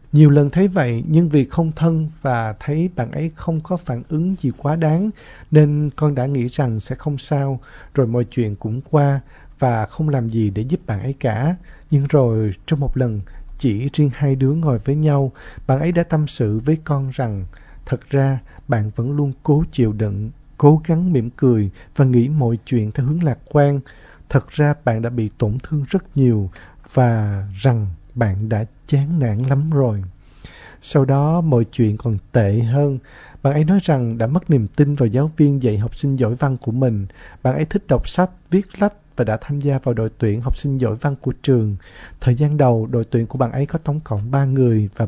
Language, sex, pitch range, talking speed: Vietnamese, male, 115-150 Hz, 210 wpm